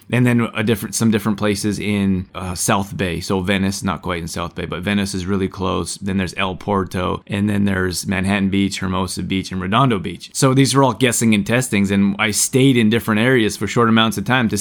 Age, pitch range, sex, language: 20-39, 100-120 Hz, male, English